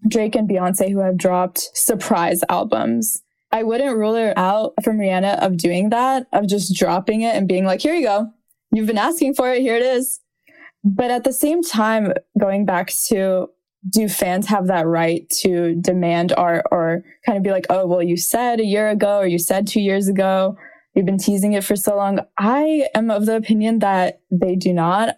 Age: 20-39